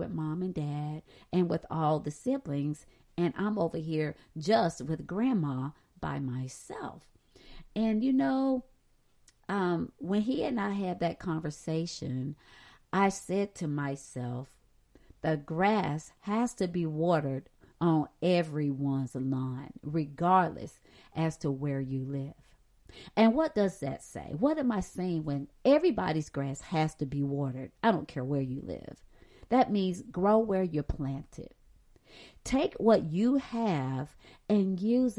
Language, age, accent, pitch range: English, 40-59, American, 150-220 Hz